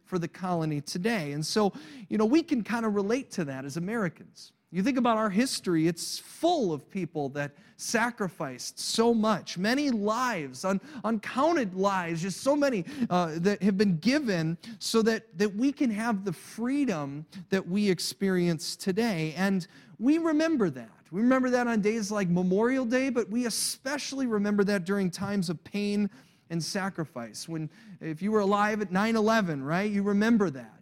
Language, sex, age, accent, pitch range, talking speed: English, male, 30-49, American, 175-230 Hz, 175 wpm